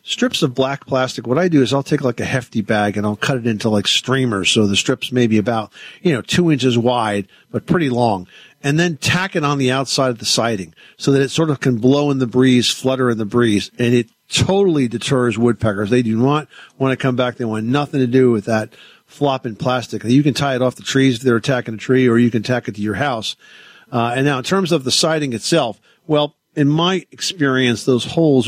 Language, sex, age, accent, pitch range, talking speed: English, male, 50-69, American, 120-145 Hz, 240 wpm